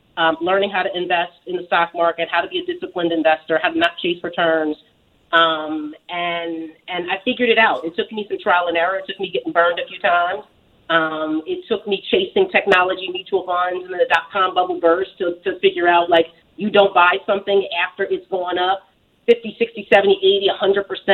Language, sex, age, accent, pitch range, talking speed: English, female, 30-49, American, 175-210 Hz, 205 wpm